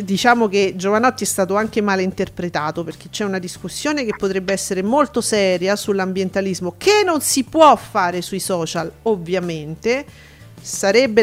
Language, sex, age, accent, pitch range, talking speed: Italian, female, 40-59, native, 185-235 Hz, 145 wpm